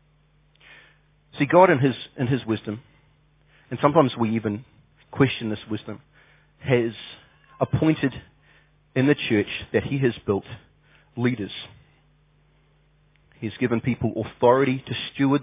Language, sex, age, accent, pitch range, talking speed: English, male, 40-59, Australian, 110-145 Hz, 115 wpm